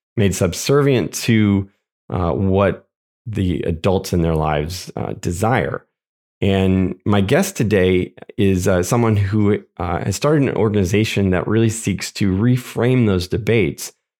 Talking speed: 135 wpm